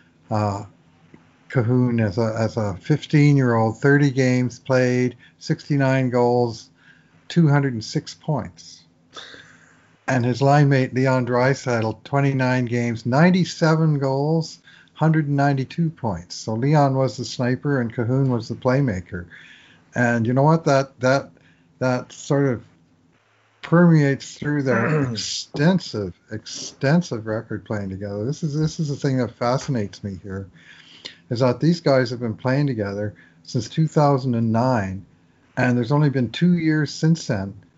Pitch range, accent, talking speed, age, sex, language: 110-140 Hz, American, 130 wpm, 50-69, male, English